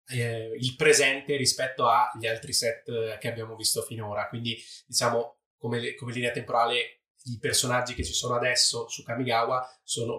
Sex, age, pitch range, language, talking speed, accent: male, 20-39, 115-140 Hz, Italian, 160 wpm, native